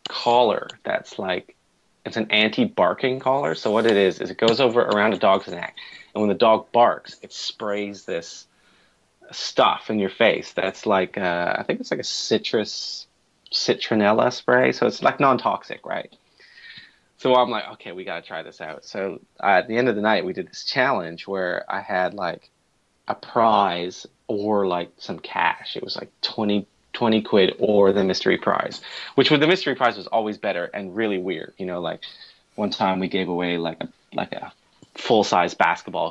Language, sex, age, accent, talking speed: English, male, 30-49, American, 190 wpm